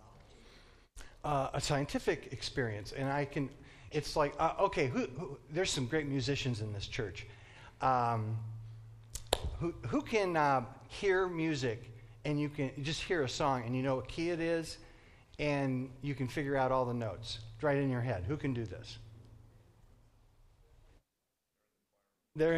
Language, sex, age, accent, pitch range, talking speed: English, male, 40-59, American, 115-145 Hz, 155 wpm